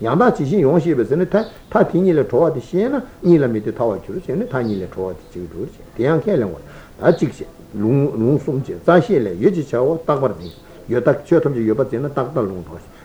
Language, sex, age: Italian, male, 60-79